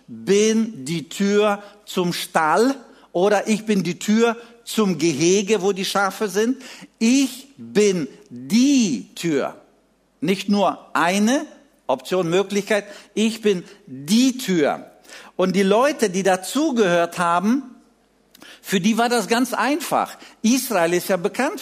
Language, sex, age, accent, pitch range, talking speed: German, male, 50-69, German, 185-235 Hz, 125 wpm